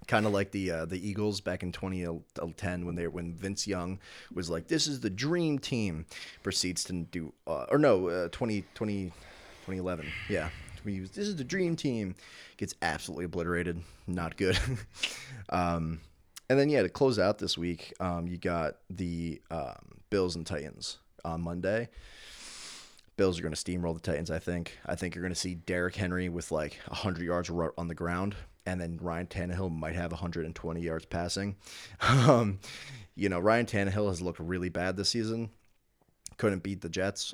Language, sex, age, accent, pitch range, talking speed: English, male, 20-39, American, 85-100 Hz, 180 wpm